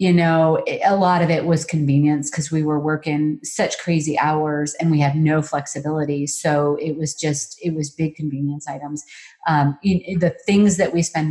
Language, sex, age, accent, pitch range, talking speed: English, female, 40-59, American, 140-160 Hz, 185 wpm